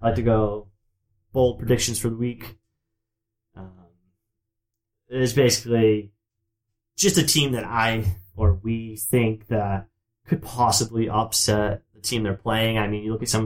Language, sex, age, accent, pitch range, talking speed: English, male, 20-39, American, 100-120 Hz, 150 wpm